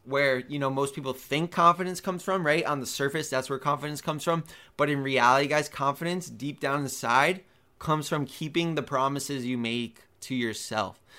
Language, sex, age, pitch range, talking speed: English, male, 20-39, 130-150 Hz, 190 wpm